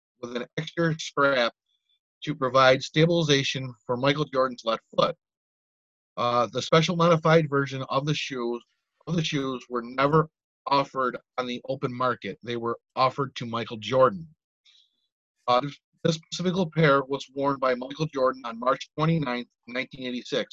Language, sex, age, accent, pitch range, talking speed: English, male, 30-49, American, 125-155 Hz, 145 wpm